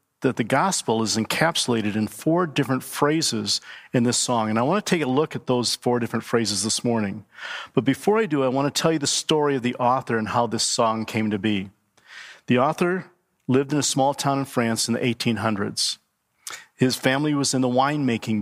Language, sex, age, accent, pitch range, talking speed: English, male, 40-59, American, 115-135 Hz, 210 wpm